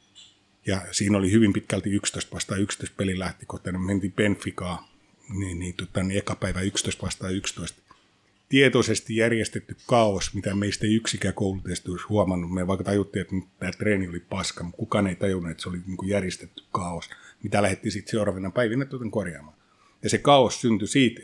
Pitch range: 95-110 Hz